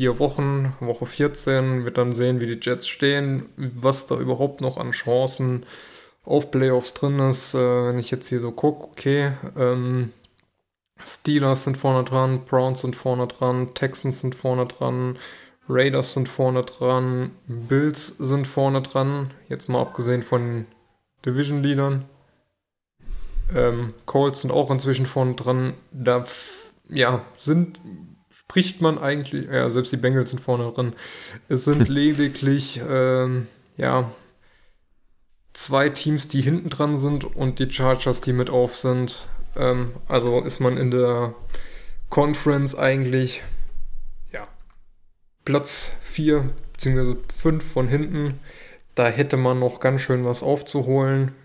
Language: German